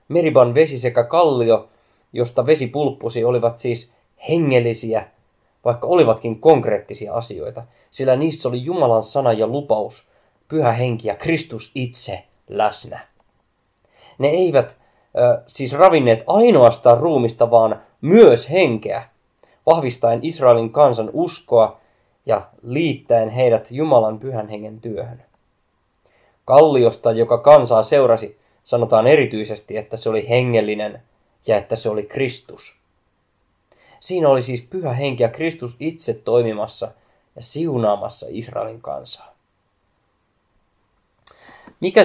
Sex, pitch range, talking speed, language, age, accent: male, 110-145 Hz, 110 wpm, Finnish, 20-39, native